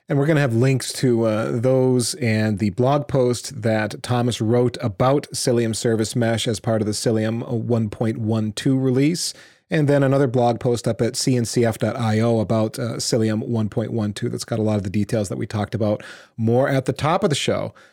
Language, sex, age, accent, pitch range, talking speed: English, male, 30-49, American, 115-140 Hz, 190 wpm